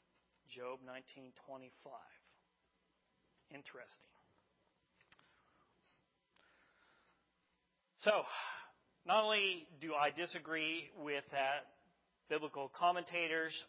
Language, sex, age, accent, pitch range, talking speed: English, male, 40-59, American, 140-180 Hz, 55 wpm